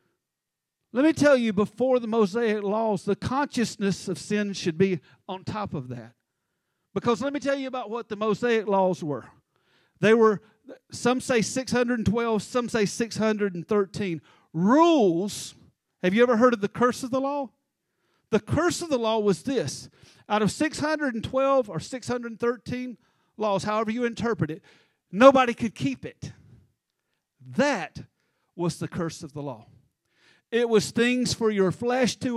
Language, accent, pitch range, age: English, American, 200-255 Hz, 50-69